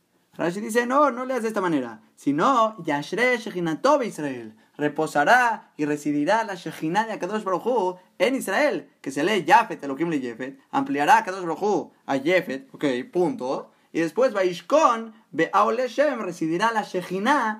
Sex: male